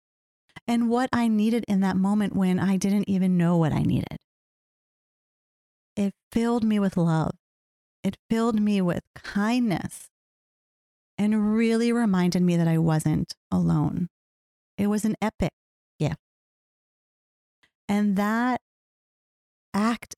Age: 30-49